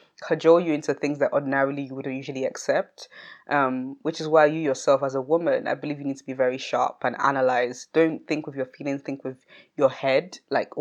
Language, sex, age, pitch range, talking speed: English, female, 20-39, 135-165 Hz, 215 wpm